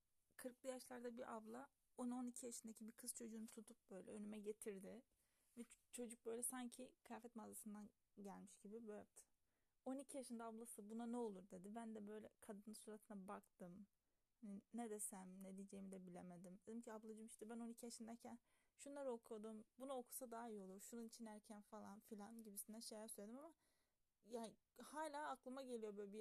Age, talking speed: 30-49, 165 wpm